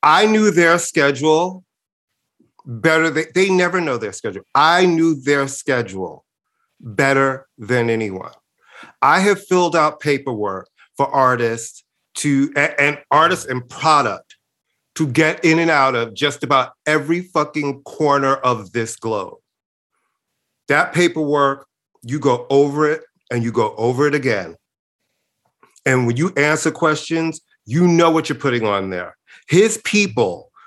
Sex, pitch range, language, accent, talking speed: male, 125-160 Hz, English, American, 135 wpm